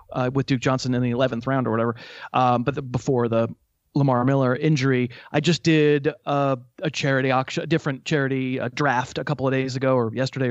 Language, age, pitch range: English, 30-49, 130-155 Hz